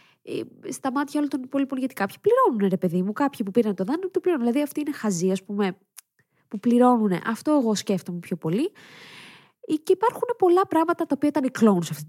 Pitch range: 195-290 Hz